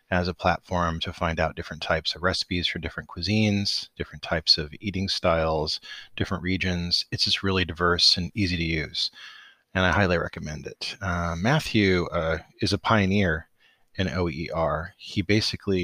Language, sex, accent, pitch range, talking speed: English, male, American, 85-100 Hz, 165 wpm